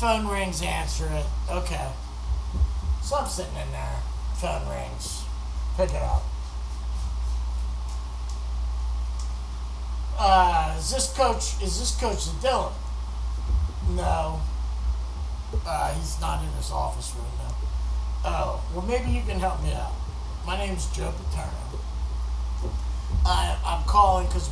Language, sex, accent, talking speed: English, male, American, 120 wpm